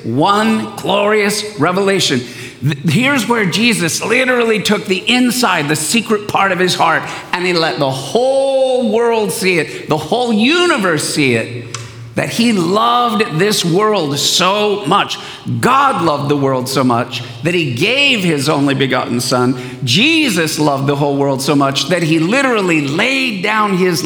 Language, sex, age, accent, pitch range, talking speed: English, male, 50-69, American, 145-220 Hz, 155 wpm